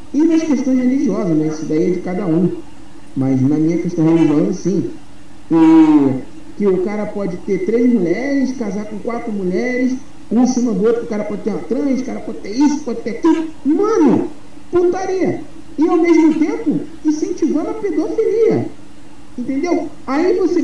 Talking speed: 175 wpm